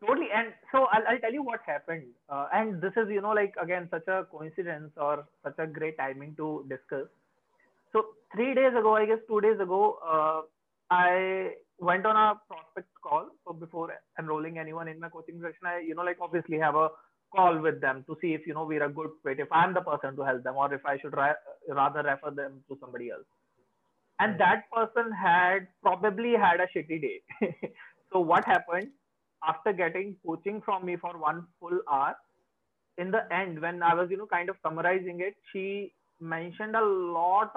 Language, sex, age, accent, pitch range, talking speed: English, male, 30-49, Indian, 155-200 Hz, 200 wpm